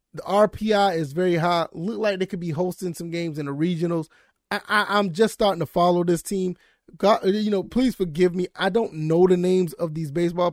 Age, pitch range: 20-39, 165-205 Hz